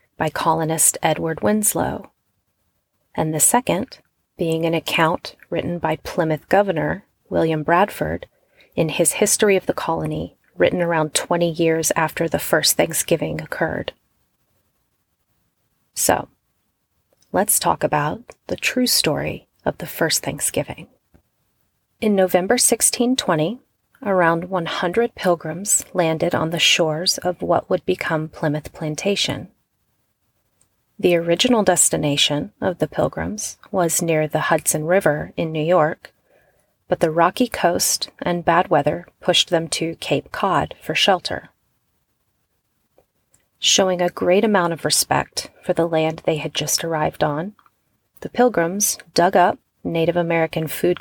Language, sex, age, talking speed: English, female, 30-49, 125 wpm